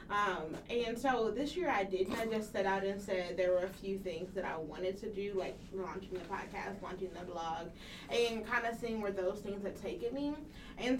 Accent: American